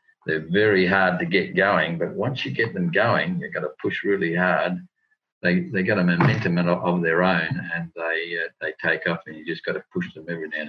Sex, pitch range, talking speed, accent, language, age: male, 85-145 Hz, 235 wpm, Australian, English, 50-69